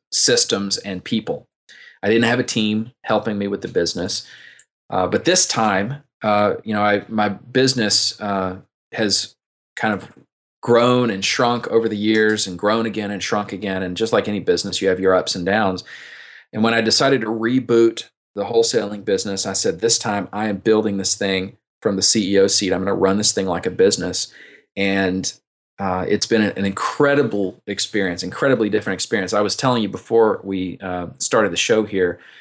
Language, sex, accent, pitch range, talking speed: English, male, American, 95-115 Hz, 190 wpm